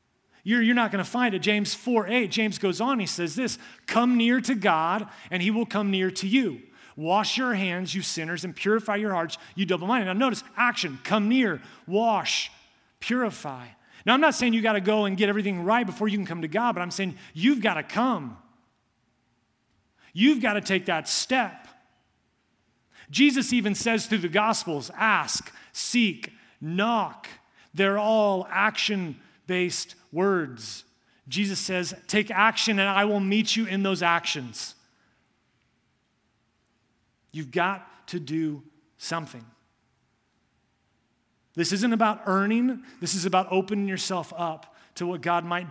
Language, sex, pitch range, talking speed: English, male, 165-220 Hz, 160 wpm